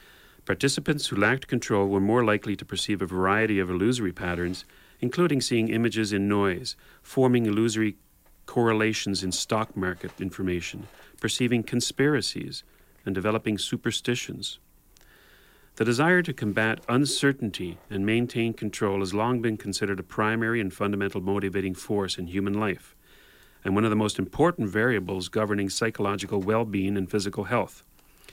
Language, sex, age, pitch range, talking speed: English, male, 40-59, 100-120 Hz, 140 wpm